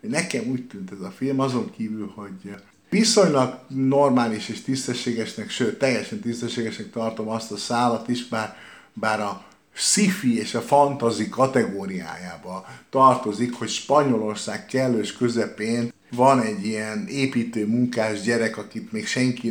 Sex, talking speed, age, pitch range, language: male, 130 wpm, 50-69, 110-150 Hz, Hungarian